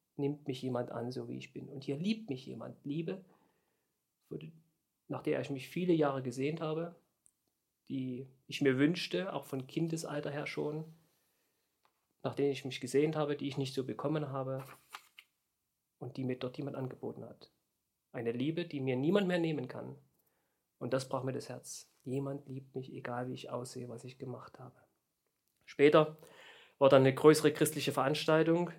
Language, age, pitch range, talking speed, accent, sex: German, 40-59, 130-150 Hz, 170 wpm, German, male